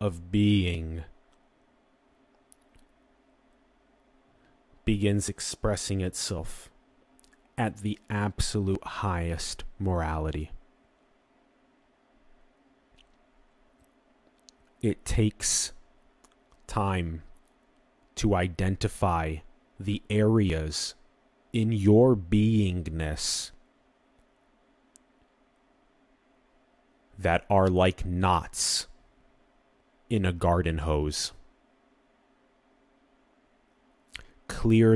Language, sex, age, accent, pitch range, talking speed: English, male, 30-49, American, 85-110 Hz, 50 wpm